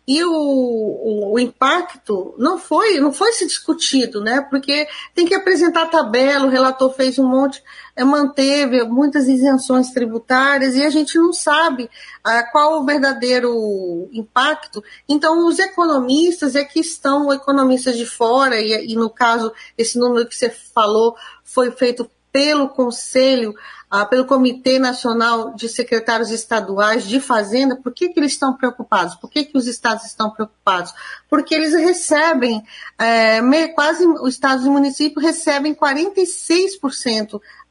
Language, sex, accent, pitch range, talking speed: Portuguese, female, Brazilian, 235-305 Hz, 140 wpm